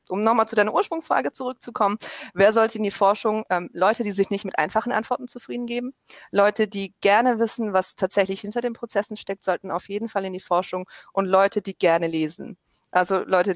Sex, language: female, German